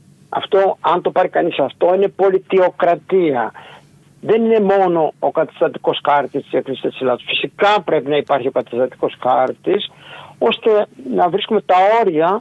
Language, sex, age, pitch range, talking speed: Greek, male, 60-79, 150-195 Hz, 145 wpm